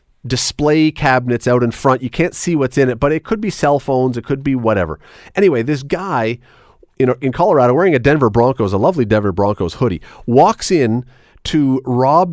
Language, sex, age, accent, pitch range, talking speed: English, male, 40-59, American, 130-190 Hz, 195 wpm